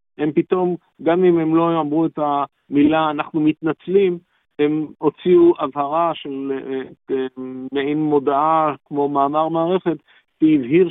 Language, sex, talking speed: Hebrew, male, 115 wpm